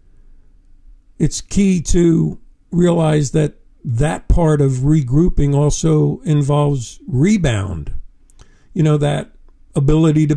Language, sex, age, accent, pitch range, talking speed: English, male, 50-69, American, 120-160 Hz, 100 wpm